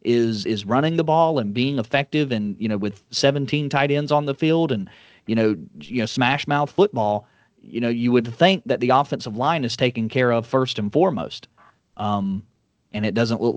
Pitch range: 110-140 Hz